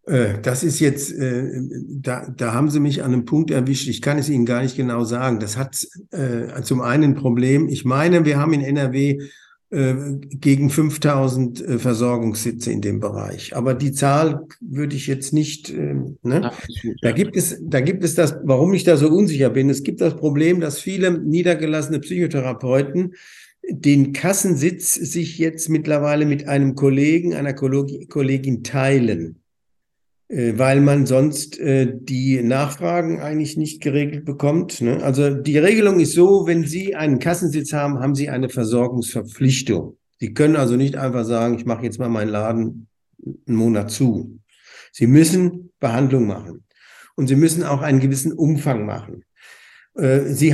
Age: 50-69